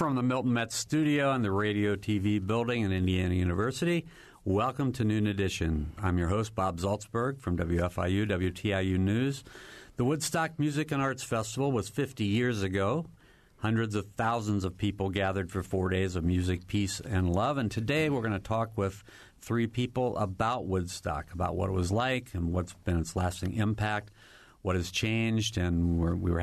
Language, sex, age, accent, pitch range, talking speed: English, male, 50-69, American, 95-115 Hz, 180 wpm